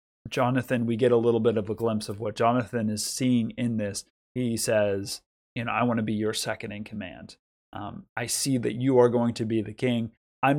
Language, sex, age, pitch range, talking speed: English, male, 30-49, 110-125 Hz, 225 wpm